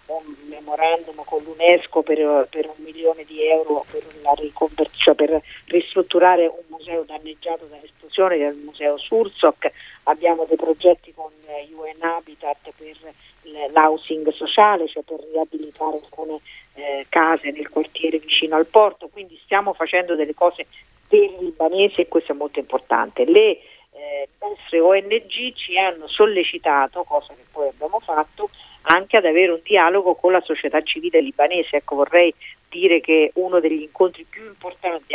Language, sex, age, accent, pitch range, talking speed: Italian, female, 40-59, native, 150-175 Hz, 145 wpm